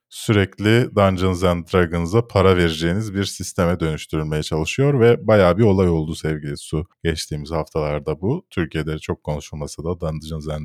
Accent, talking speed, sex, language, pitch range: native, 145 wpm, male, Turkish, 90-135 Hz